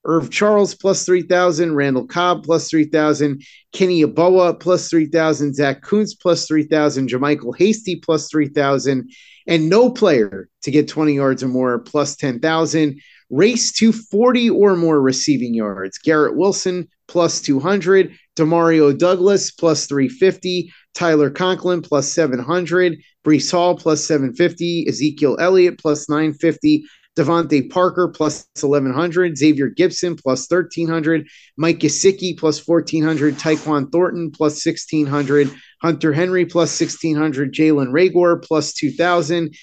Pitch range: 150-180 Hz